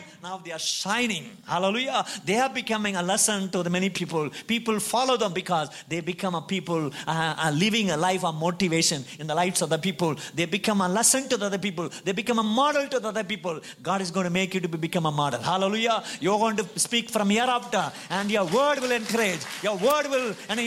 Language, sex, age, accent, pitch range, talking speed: Tamil, male, 50-69, native, 165-230 Hz, 235 wpm